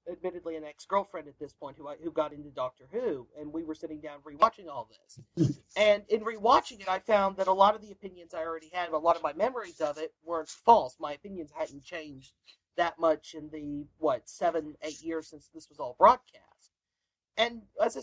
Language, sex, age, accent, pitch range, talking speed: English, male, 40-59, American, 170-225 Hz, 215 wpm